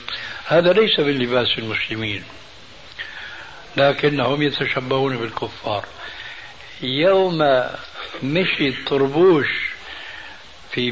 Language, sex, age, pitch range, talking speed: Arabic, male, 60-79, 125-155 Hz, 65 wpm